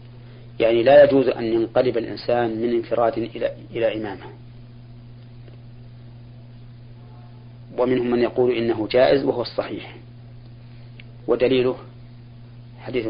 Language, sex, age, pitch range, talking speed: Arabic, male, 40-59, 115-120 Hz, 90 wpm